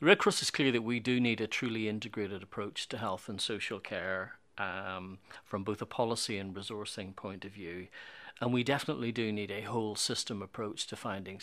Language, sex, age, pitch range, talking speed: English, male, 40-59, 100-120 Hz, 205 wpm